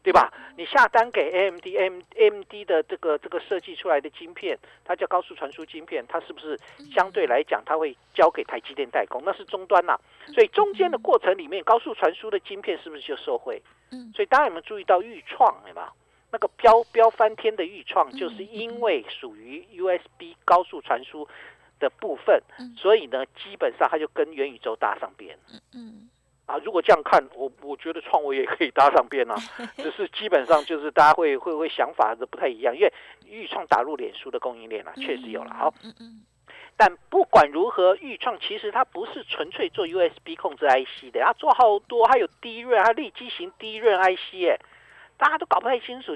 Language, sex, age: Chinese, male, 50-69